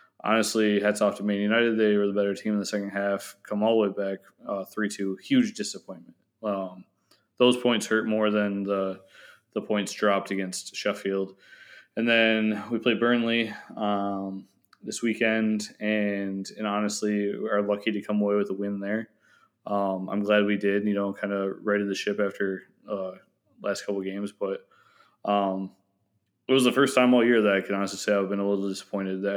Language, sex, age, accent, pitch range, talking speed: English, male, 20-39, American, 95-105 Hz, 195 wpm